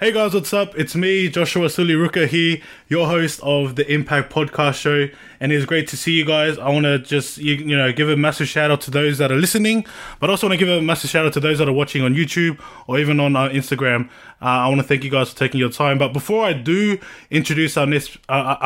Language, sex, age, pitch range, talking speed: English, male, 20-39, 135-165 Hz, 255 wpm